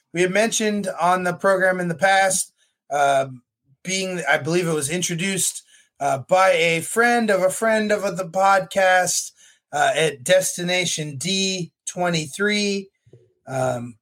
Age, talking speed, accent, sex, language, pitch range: 30-49, 135 wpm, American, male, English, 155-190 Hz